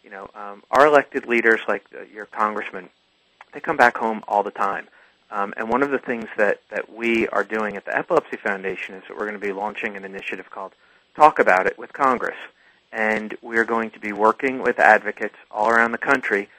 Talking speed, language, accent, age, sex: 215 wpm, English, American, 40-59, male